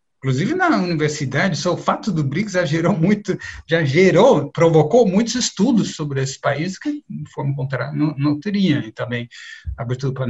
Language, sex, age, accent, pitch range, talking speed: Portuguese, male, 60-79, Brazilian, 130-185 Hz, 145 wpm